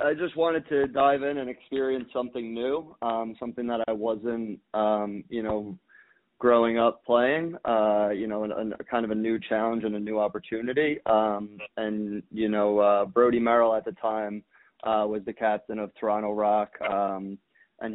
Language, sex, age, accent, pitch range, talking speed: English, male, 20-39, American, 105-115 Hz, 175 wpm